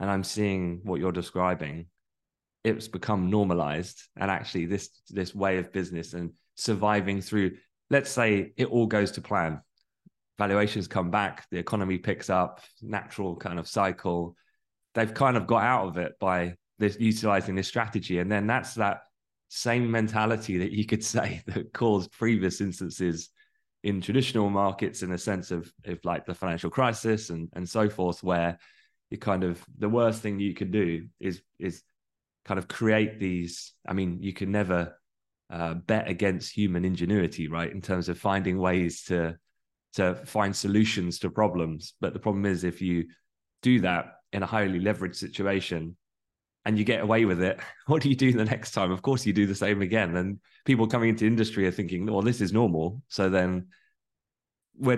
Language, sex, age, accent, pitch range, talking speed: English, male, 20-39, British, 90-110 Hz, 180 wpm